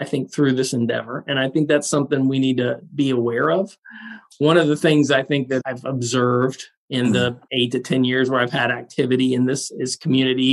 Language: English